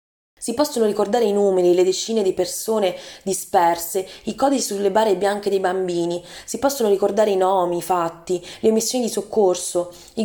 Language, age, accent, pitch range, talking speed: Italian, 20-39, native, 185-220 Hz, 170 wpm